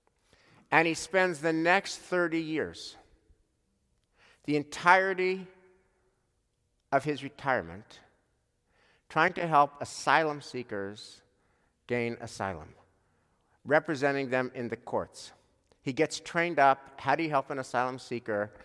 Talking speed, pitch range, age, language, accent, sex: 115 wpm, 110-150 Hz, 50-69, English, American, male